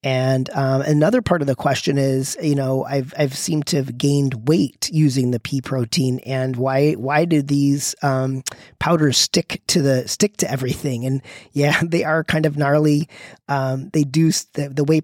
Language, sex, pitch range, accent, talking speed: English, male, 135-155 Hz, American, 190 wpm